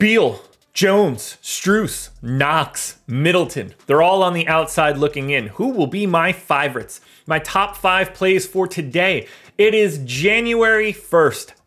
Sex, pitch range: male, 150-210 Hz